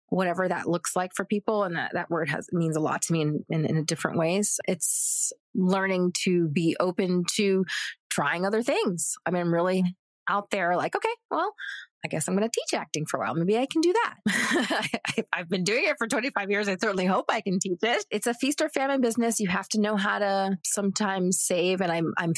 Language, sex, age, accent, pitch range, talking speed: English, female, 30-49, American, 165-210 Hz, 230 wpm